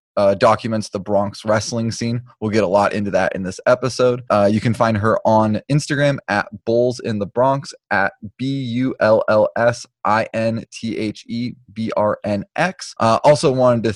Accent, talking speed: American, 195 wpm